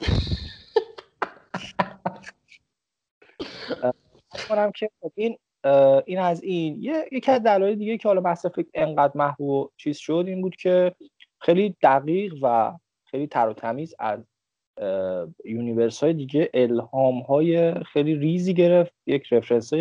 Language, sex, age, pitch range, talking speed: Persian, male, 20-39, 115-175 Hz, 100 wpm